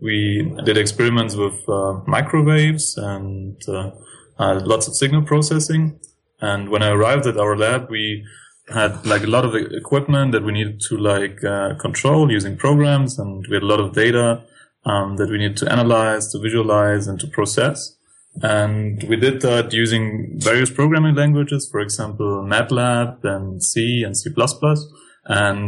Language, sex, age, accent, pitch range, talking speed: English, male, 20-39, German, 105-125 Hz, 165 wpm